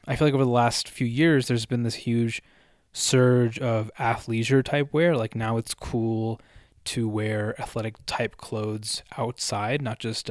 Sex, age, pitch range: male, 20-39, 110-130 Hz